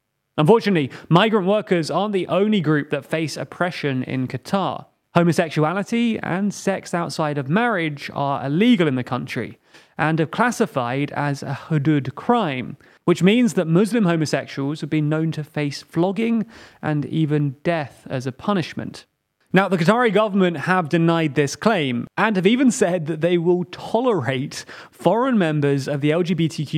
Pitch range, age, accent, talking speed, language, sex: 140-185 Hz, 30-49, British, 150 wpm, English, male